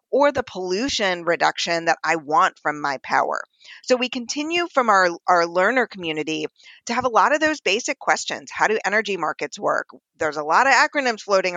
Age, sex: 40-59, female